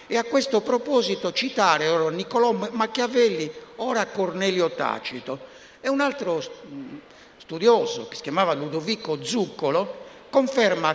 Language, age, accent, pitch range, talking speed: Italian, 60-79, native, 150-225 Hz, 115 wpm